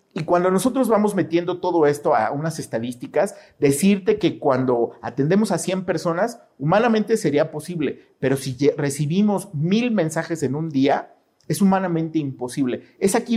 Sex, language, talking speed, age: male, Spanish, 150 wpm, 40-59